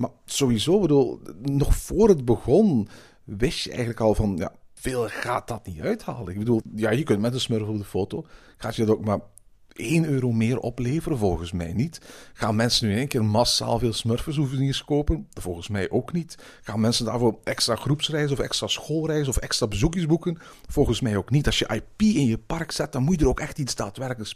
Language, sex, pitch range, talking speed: Dutch, male, 105-155 Hz, 215 wpm